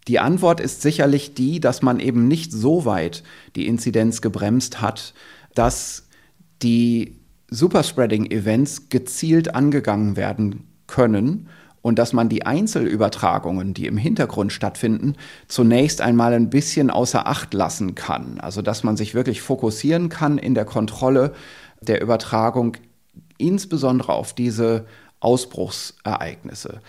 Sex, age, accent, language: male, 30-49, German, German